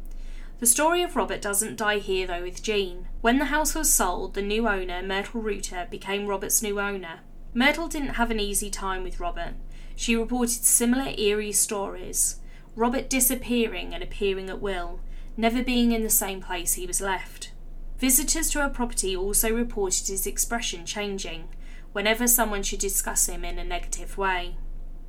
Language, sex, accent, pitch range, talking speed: English, female, British, 185-230 Hz, 165 wpm